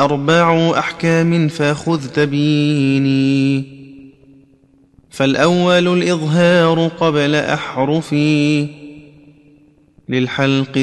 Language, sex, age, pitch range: Arabic, male, 30-49, 135-160 Hz